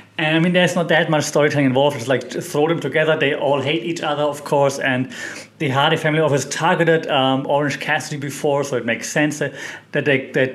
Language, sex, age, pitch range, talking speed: English, male, 30-49, 135-175 Hz, 220 wpm